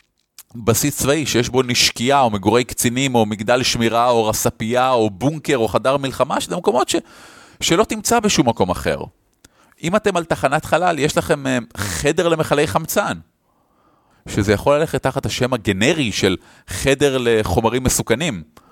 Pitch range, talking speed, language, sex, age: 110-145 Hz, 145 wpm, Hebrew, male, 30-49